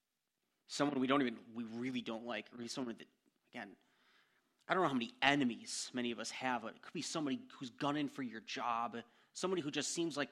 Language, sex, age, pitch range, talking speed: English, male, 30-49, 115-145 Hz, 215 wpm